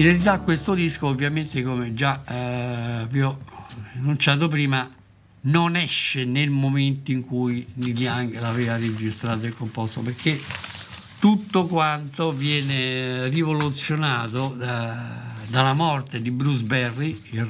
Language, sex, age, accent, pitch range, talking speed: Italian, male, 60-79, native, 110-155 Hz, 125 wpm